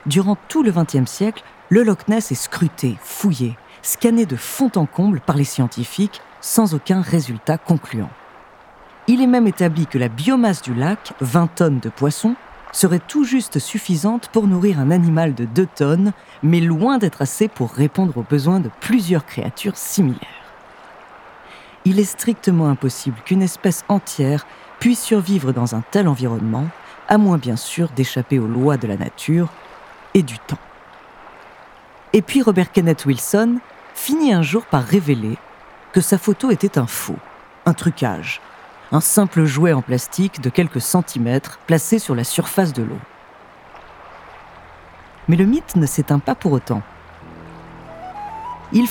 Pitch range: 140-210 Hz